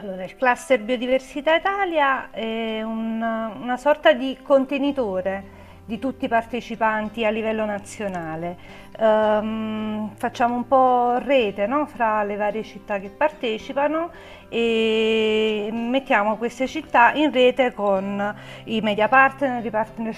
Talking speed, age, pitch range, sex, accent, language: 125 wpm, 50-69, 205-250 Hz, female, native, Italian